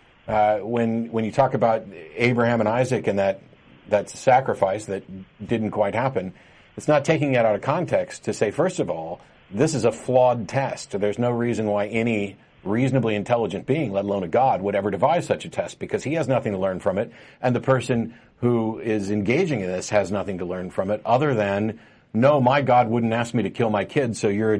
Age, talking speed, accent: 50-69, 215 wpm, American